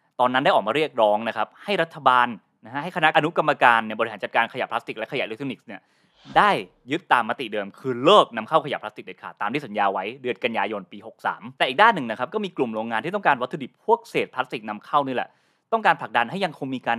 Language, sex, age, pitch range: Thai, male, 20-39, 115-160 Hz